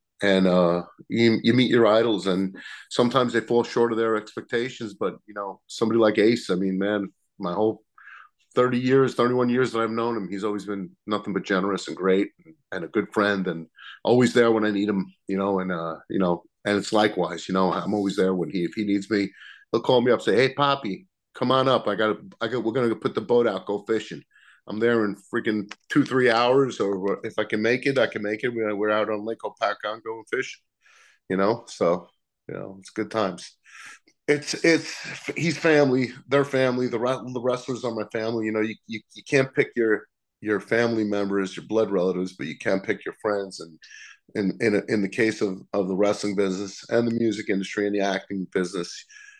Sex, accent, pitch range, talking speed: male, American, 95-120 Hz, 220 wpm